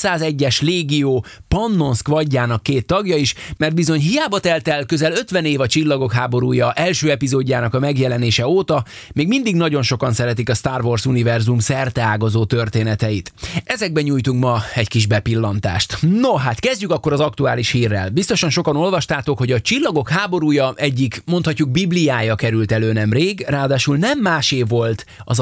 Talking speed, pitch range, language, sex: 155 wpm, 120-165 Hz, Hungarian, male